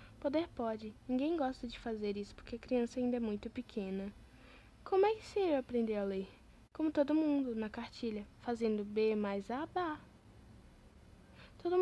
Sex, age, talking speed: female, 10-29, 170 wpm